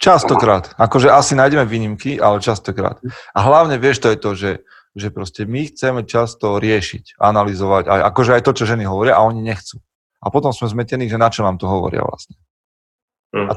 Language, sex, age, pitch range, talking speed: Slovak, male, 30-49, 95-125 Hz, 190 wpm